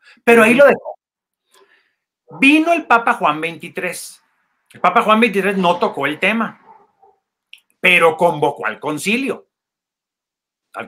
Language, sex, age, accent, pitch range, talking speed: Spanish, male, 40-59, Mexican, 175-245 Hz, 120 wpm